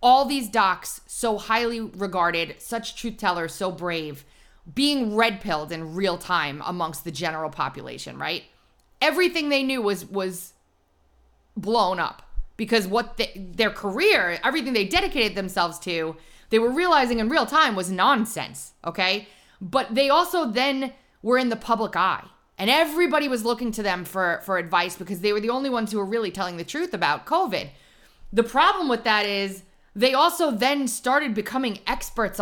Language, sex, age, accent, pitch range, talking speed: English, female, 20-39, American, 185-245 Hz, 165 wpm